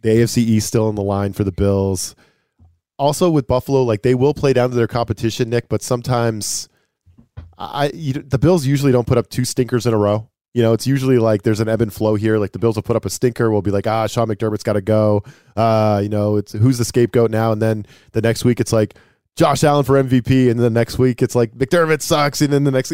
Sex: male